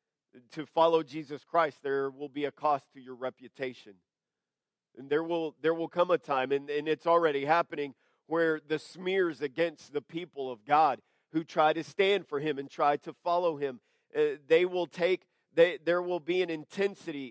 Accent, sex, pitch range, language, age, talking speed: American, male, 135-170 Hz, English, 50-69, 185 wpm